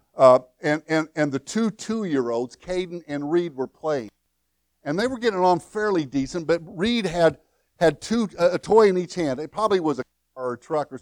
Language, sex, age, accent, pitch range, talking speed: English, male, 60-79, American, 130-185 Hz, 210 wpm